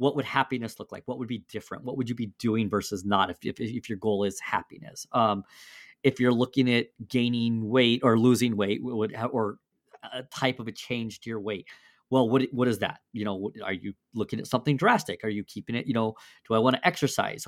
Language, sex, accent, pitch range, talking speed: English, male, American, 110-130 Hz, 230 wpm